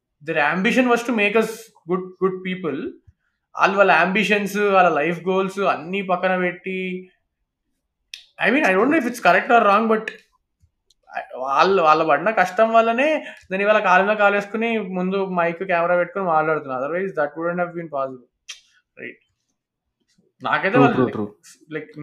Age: 20-39